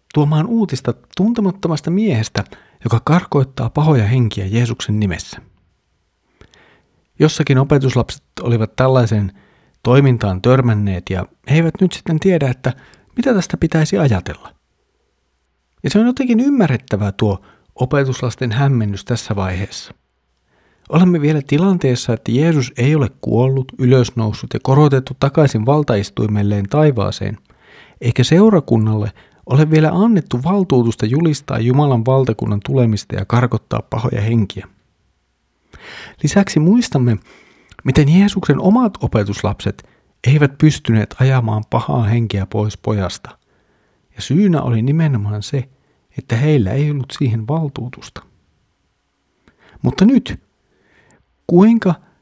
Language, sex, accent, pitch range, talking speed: Finnish, male, native, 110-155 Hz, 105 wpm